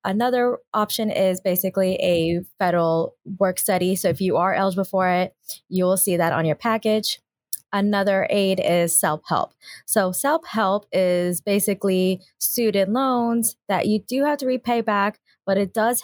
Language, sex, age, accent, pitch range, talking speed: English, female, 20-39, American, 180-205 Hz, 155 wpm